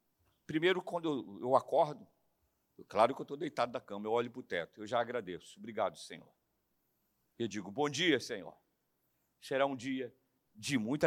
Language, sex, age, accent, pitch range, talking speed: Portuguese, male, 50-69, Brazilian, 165-265 Hz, 175 wpm